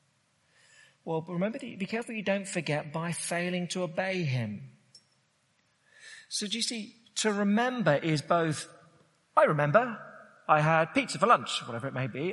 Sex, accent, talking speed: male, British, 160 wpm